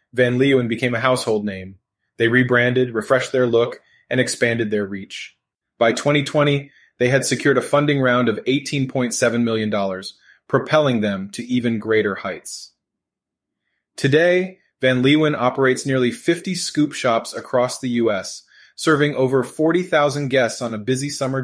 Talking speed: 145 wpm